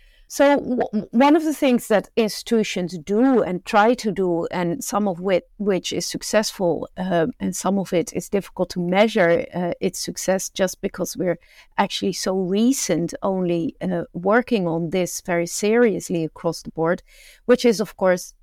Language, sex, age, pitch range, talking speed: English, female, 50-69, 180-230 Hz, 170 wpm